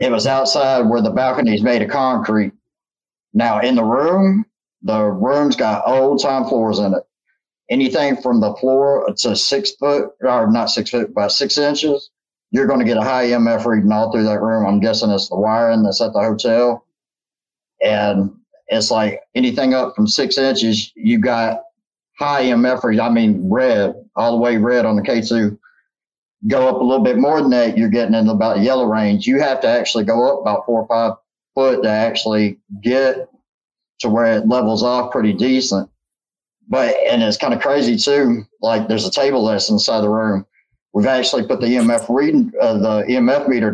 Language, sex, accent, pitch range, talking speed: English, male, American, 110-130 Hz, 190 wpm